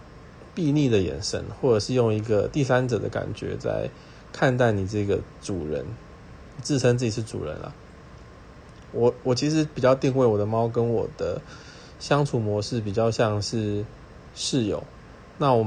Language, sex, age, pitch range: Chinese, male, 20-39, 105-125 Hz